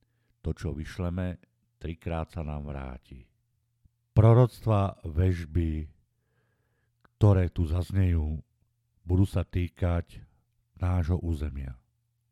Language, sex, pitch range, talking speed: Slovak, male, 80-115 Hz, 85 wpm